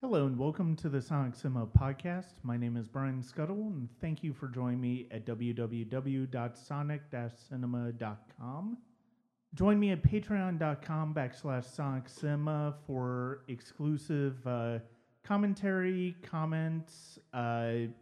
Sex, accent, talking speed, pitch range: male, American, 110 wpm, 115-145 Hz